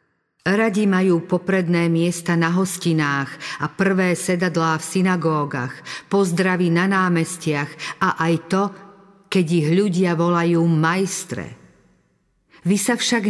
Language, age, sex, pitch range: Slovak, 50-69, female, 155-190 Hz